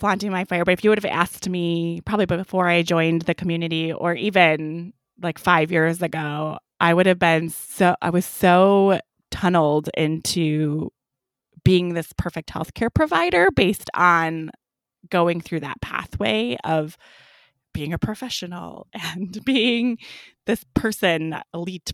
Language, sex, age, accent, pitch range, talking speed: English, female, 20-39, American, 155-180 Hz, 140 wpm